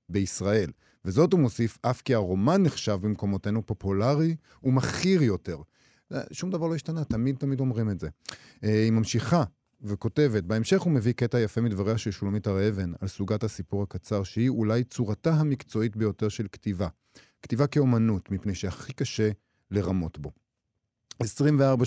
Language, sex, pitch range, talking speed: Hebrew, male, 100-130 Hz, 145 wpm